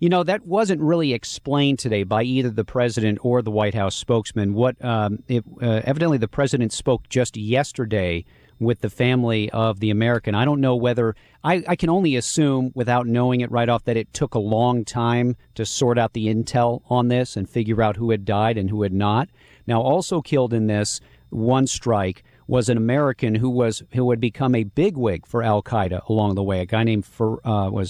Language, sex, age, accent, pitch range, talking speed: English, male, 40-59, American, 105-130 Hz, 200 wpm